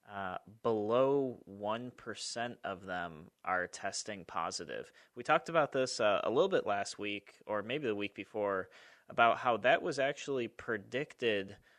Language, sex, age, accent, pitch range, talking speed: English, male, 30-49, American, 100-115 Hz, 150 wpm